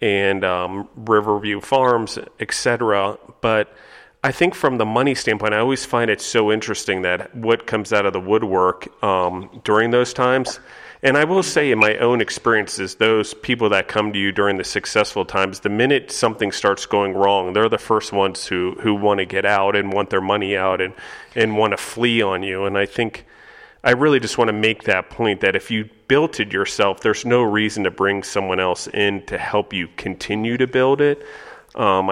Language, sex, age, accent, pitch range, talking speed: English, male, 40-59, American, 95-110 Hz, 200 wpm